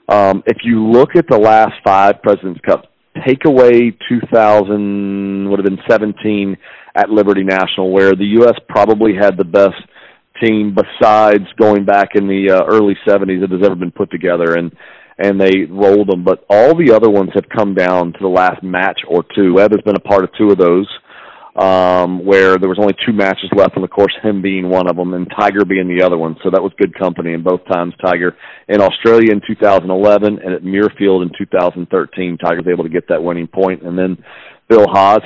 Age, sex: 40-59, male